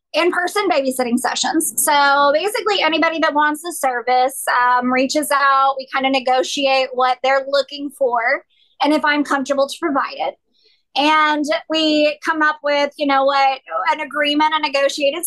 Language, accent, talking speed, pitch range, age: English, American, 155 wpm, 260-310 Hz, 20-39